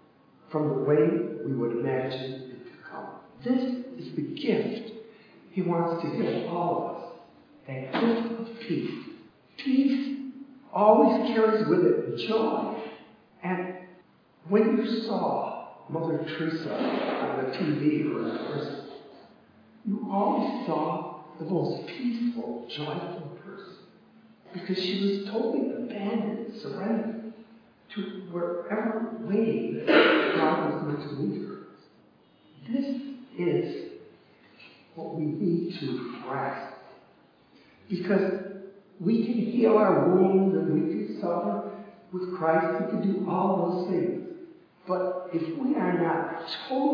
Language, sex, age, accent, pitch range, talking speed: English, male, 60-79, American, 170-225 Hz, 120 wpm